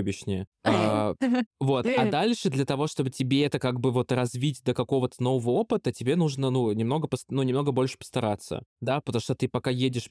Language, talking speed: Russian, 190 wpm